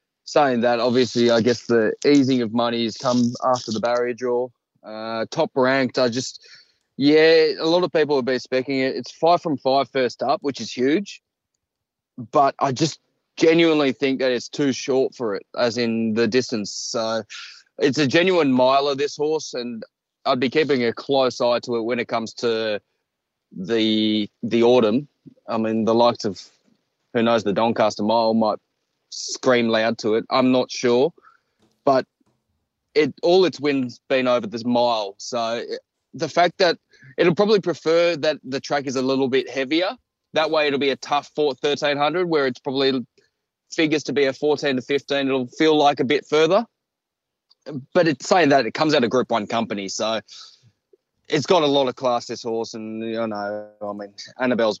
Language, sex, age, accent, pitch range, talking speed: English, male, 20-39, Australian, 115-145 Hz, 185 wpm